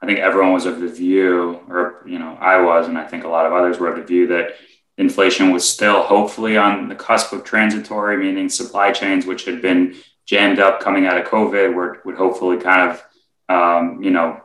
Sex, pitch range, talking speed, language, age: male, 85-100 Hz, 220 wpm, English, 20-39